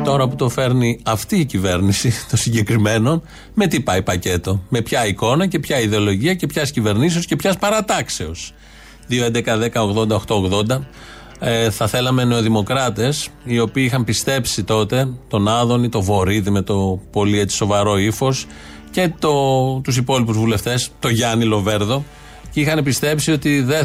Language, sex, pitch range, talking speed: Greek, male, 110-145 Hz, 155 wpm